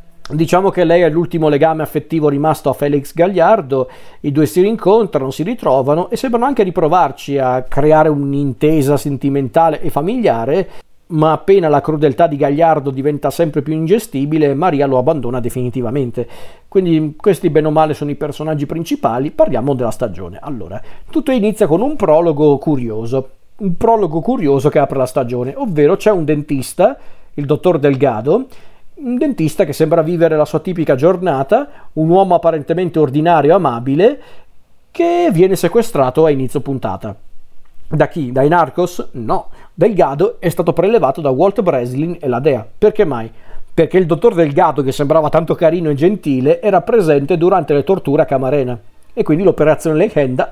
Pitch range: 140-175 Hz